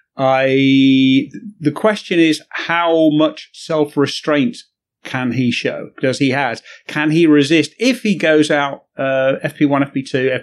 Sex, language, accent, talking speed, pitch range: male, English, British, 140 wpm, 125-155 Hz